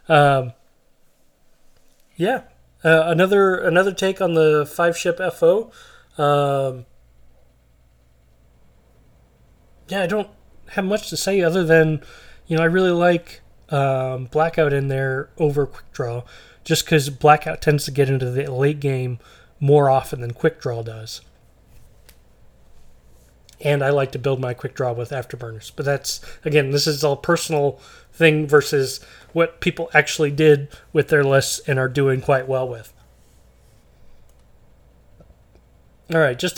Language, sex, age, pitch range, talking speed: English, male, 20-39, 135-170 Hz, 135 wpm